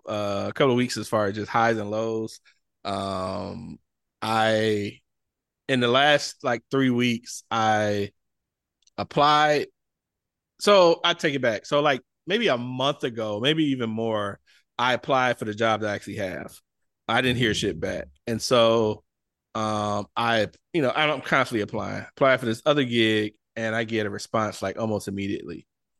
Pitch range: 105-130 Hz